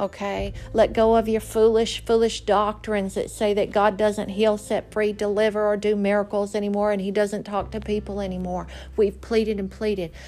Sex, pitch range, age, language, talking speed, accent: female, 200-260 Hz, 50-69, English, 185 wpm, American